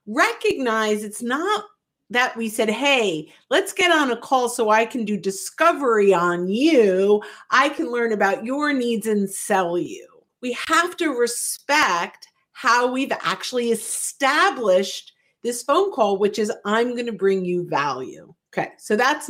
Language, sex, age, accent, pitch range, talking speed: English, female, 50-69, American, 195-265 Hz, 155 wpm